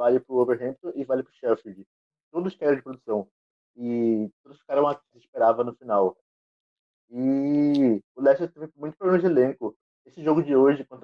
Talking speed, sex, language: 180 wpm, male, Portuguese